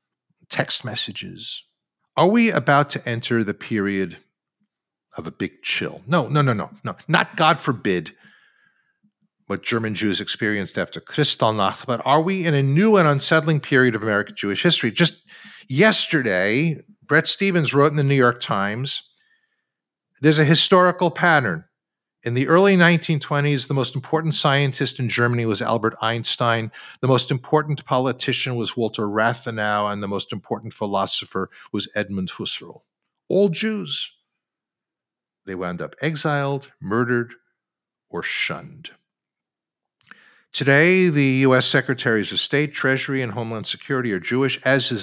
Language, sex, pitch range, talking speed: English, male, 115-160 Hz, 140 wpm